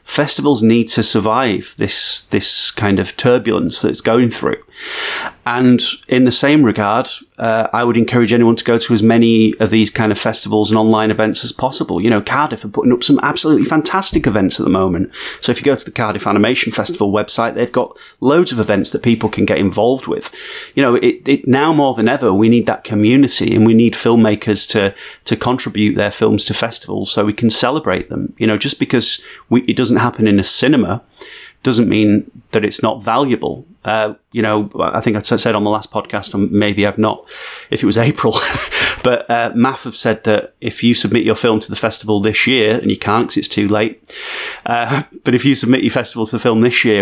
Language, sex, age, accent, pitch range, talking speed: English, male, 30-49, British, 105-120 Hz, 215 wpm